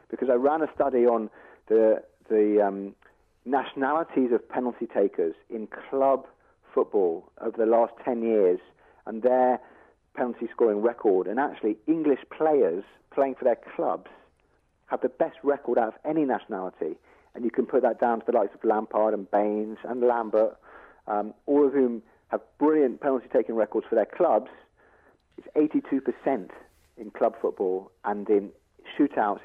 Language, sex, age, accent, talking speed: English, male, 40-59, British, 155 wpm